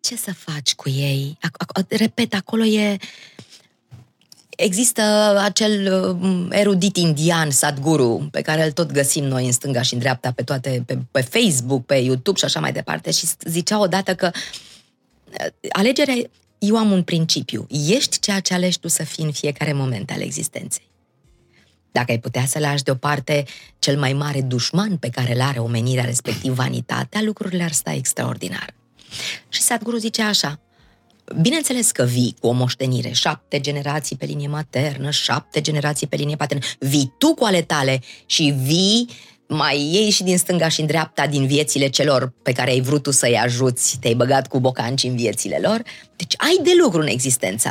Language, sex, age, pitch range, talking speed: Romanian, female, 20-39, 130-180 Hz, 170 wpm